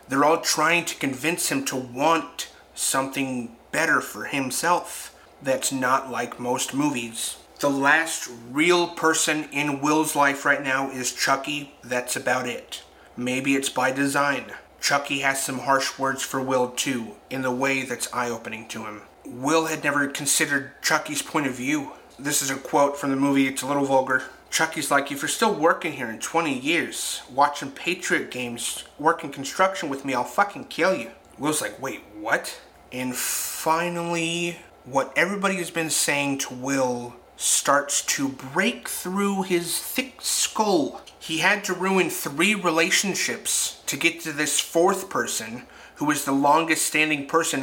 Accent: American